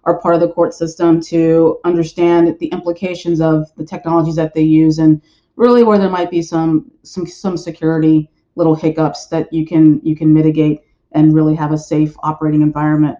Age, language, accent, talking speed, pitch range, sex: 30-49, English, American, 185 wpm, 165-195 Hz, female